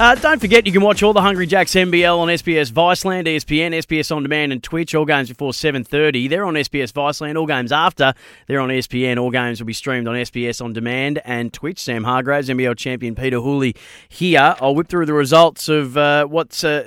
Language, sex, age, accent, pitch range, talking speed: English, male, 30-49, Australian, 130-150 Hz, 215 wpm